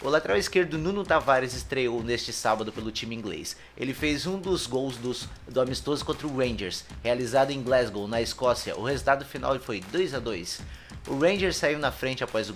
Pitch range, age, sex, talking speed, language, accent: 120-160 Hz, 20-39, male, 195 wpm, Portuguese, Brazilian